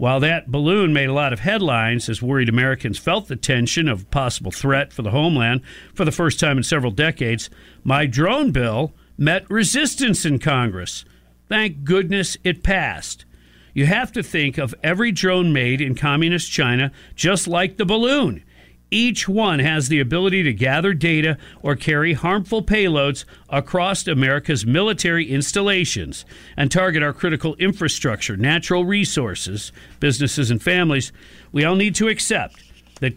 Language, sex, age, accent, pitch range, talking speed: English, male, 50-69, American, 130-185 Hz, 155 wpm